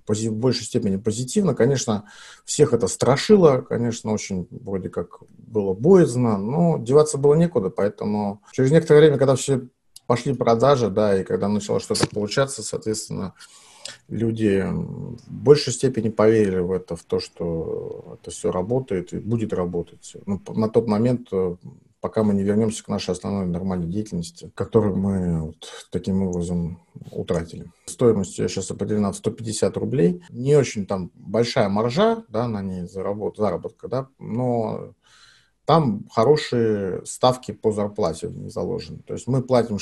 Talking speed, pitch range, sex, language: 145 wpm, 100-135 Hz, male, Russian